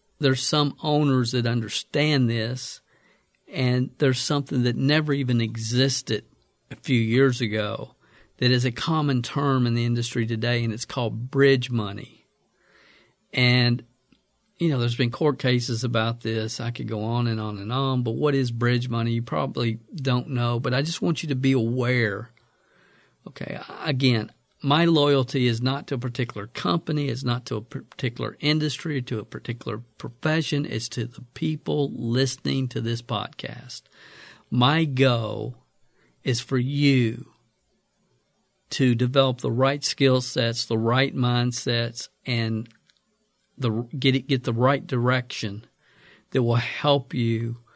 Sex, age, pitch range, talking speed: male, 50-69, 115-135 Hz, 150 wpm